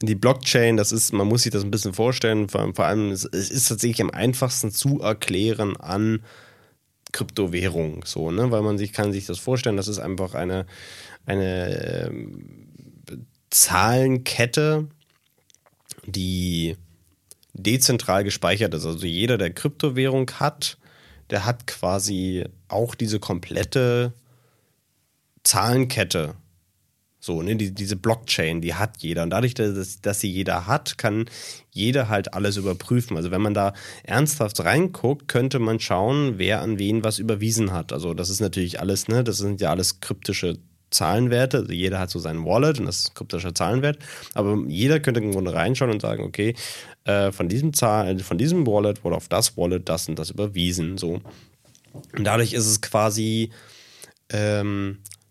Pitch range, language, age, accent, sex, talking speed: 95-120 Hz, German, 30-49, German, male, 155 wpm